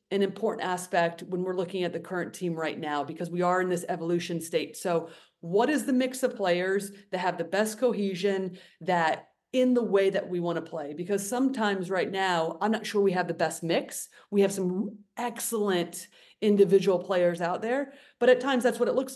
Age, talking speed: 30-49, 210 wpm